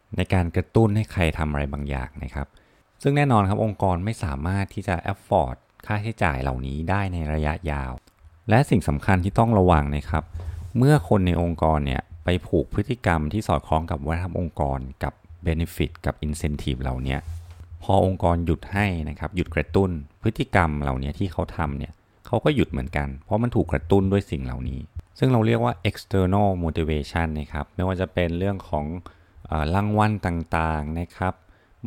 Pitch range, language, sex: 75-100 Hz, Thai, male